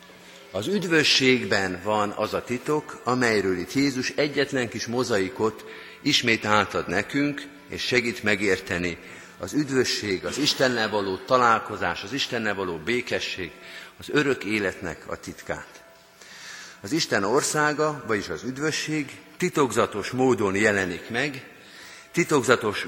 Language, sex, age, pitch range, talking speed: Hungarian, male, 50-69, 105-140 Hz, 115 wpm